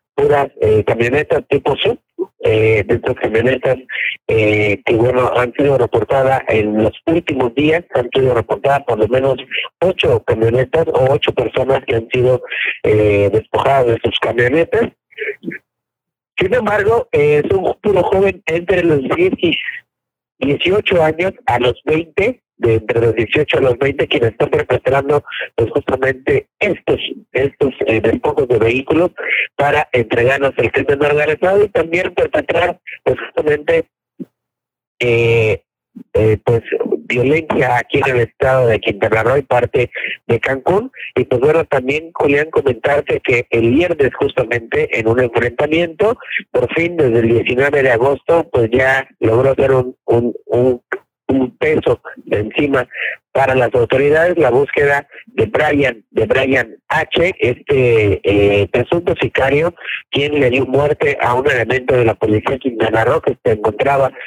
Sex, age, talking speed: male, 50-69, 145 wpm